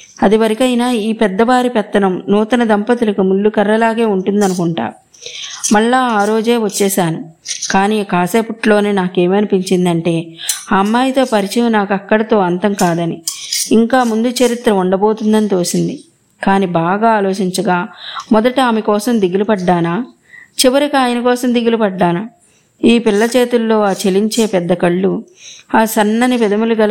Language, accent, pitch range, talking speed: Telugu, native, 190-230 Hz, 110 wpm